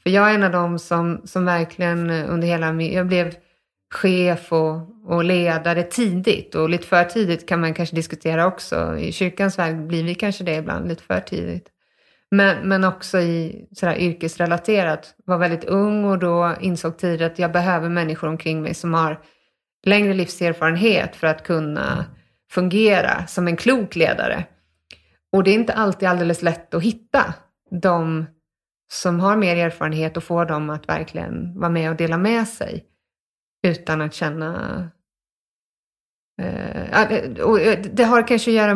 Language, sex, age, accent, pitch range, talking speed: Swedish, female, 30-49, native, 165-190 Hz, 160 wpm